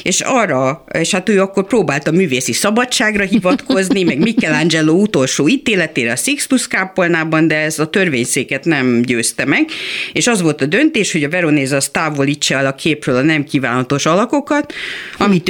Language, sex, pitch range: Hungarian, female, 140-195 Hz